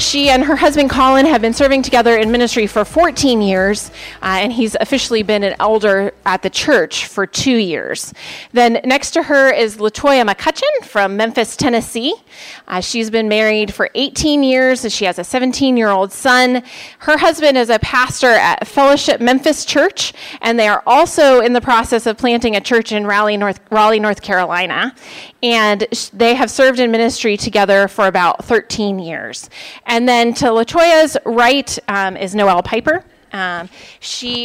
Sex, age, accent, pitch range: female, 30-49, American, 210-275 Hz